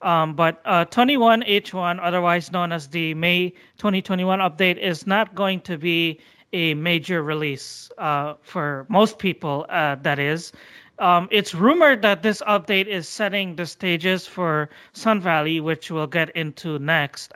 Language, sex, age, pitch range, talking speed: English, male, 30-49, 165-195 Hz, 150 wpm